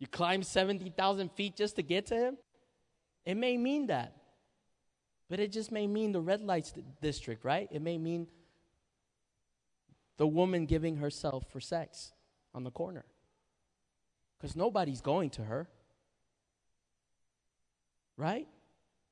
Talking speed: 130 wpm